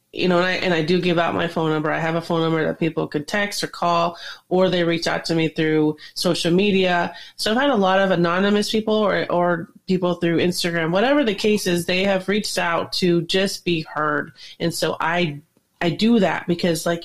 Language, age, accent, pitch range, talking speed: English, 30-49, American, 165-190 Hz, 230 wpm